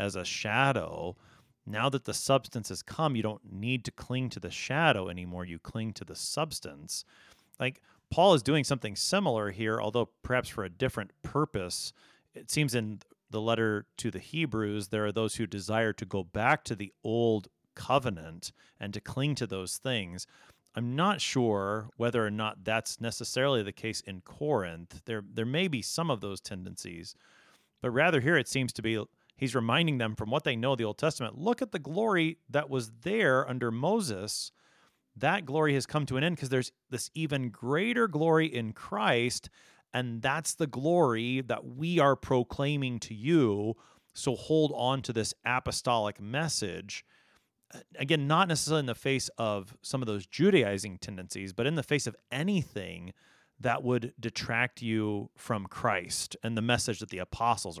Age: 30-49